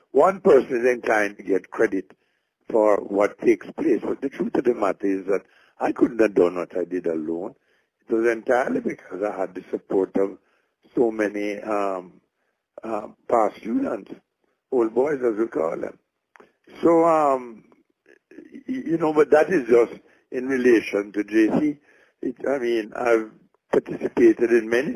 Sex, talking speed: male, 160 wpm